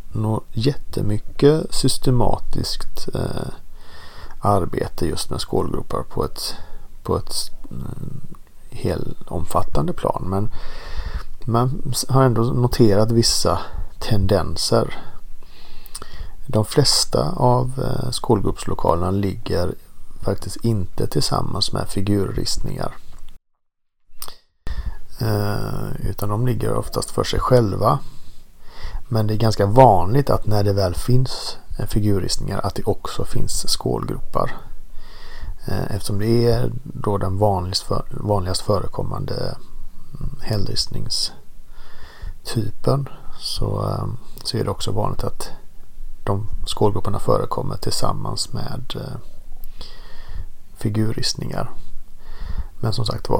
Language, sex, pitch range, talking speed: Swedish, male, 95-125 Hz, 90 wpm